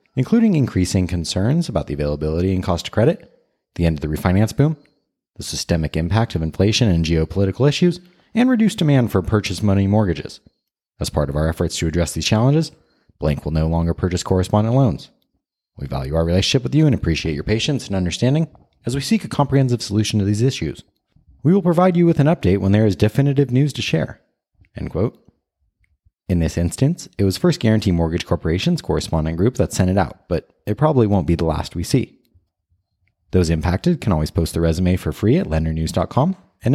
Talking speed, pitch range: 195 wpm, 80-125 Hz